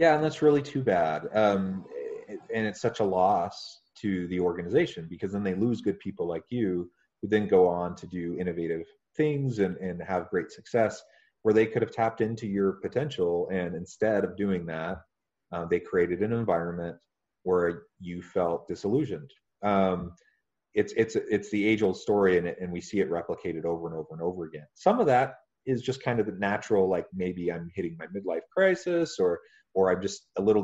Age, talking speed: 30-49, 200 wpm